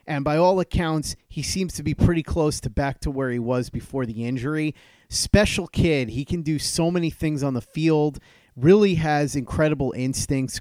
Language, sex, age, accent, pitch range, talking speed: English, male, 30-49, American, 130-165 Hz, 190 wpm